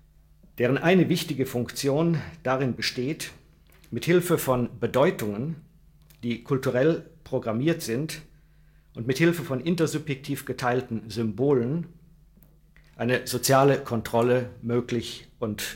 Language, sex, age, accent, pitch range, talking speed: German, male, 50-69, German, 110-145 Hz, 90 wpm